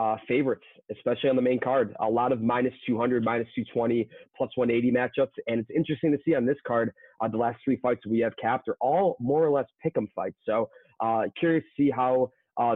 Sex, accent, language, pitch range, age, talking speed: male, American, English, 115-130 Hz, 30-49, 225 wpm